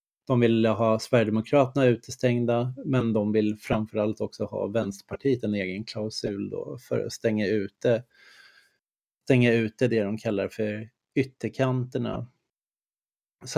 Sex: male